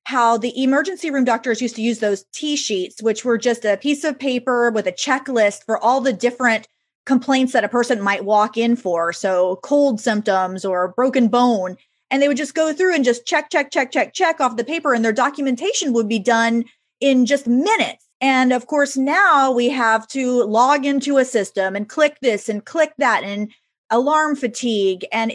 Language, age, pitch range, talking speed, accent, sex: English, 30-49, 210-265 Hz, 200 wpm, American, female